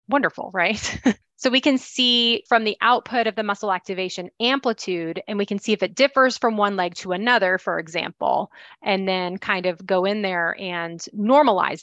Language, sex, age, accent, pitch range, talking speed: English, female, 30-49, American, 190-235 Hz, 190 wpm